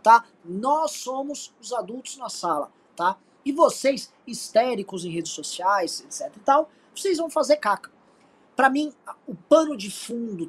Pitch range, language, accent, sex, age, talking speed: 185-260 Hz, Portuguese, Brazilian, male, 20-39, 155 wpm